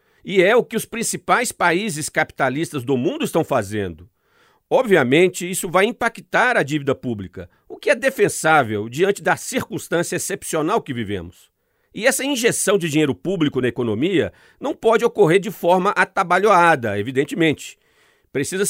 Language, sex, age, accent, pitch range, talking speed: Portuguese, male, 50-69, Brazilian, 155-220 Hz, 145 wpm